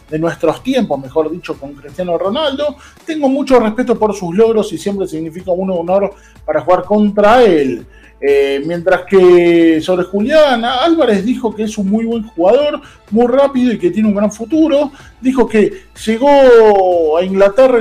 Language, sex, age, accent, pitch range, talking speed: Spanish, male, 40-59, Argentinian, 170-230 Hz, 165 wpm